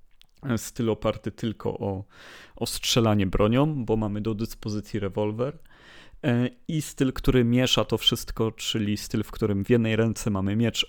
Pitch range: 105-120 Hz